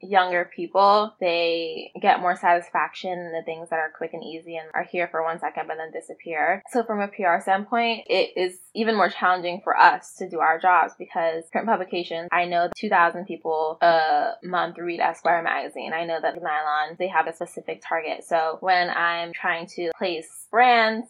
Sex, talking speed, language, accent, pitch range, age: female, 195 wpm, English, American, 165-195 Hz, 10-29